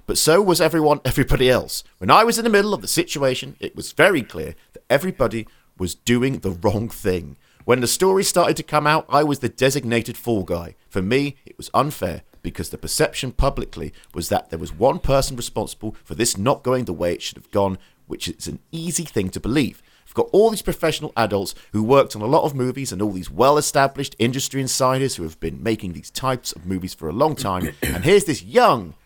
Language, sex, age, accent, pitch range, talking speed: English, male, 40-59, British, 95-140 Hz, 220 wpm